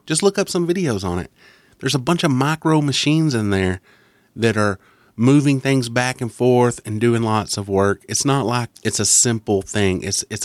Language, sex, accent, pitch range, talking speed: English, male, American, 100-130 Hz, 205 wpm